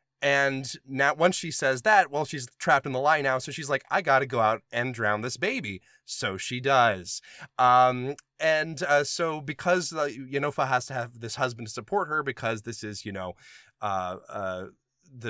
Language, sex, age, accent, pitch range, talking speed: English, male, 20-39, American, 120-155 Hz, 200 wpm